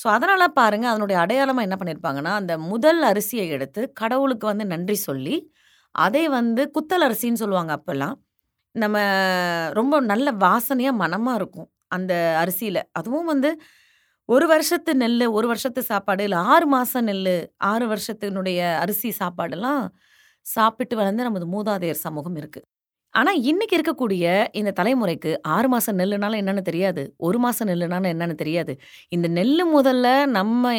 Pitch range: 180-245 Hz